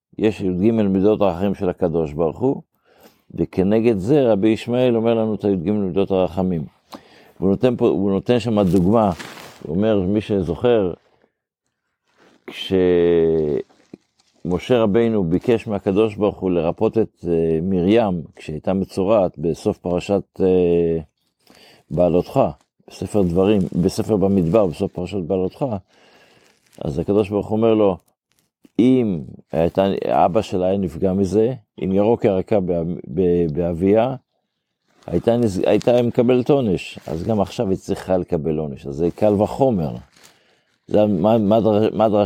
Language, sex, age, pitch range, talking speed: Hebrew, male, 50-69, 90-110 Hz, 120 wpm